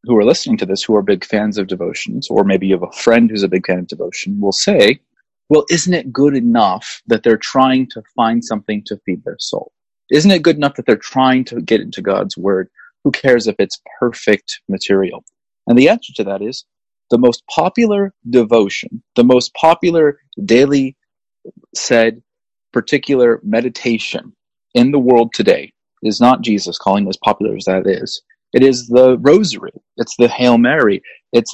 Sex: male